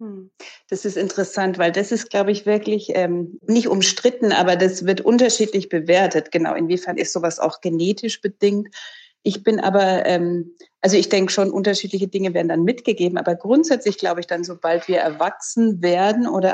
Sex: female